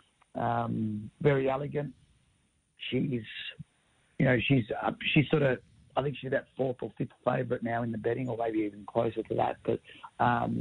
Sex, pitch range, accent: male, 115-135 Hz, Australian